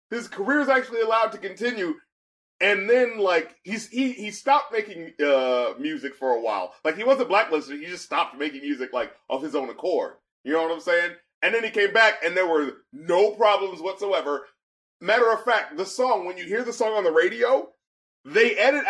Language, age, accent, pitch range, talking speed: English, 30-49, American, 160-255 Hz, 205 wpm